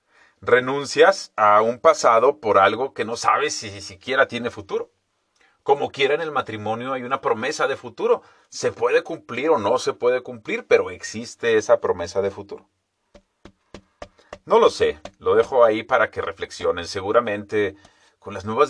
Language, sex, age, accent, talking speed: Spanish, male, 40-59, Mexican, 160 wpm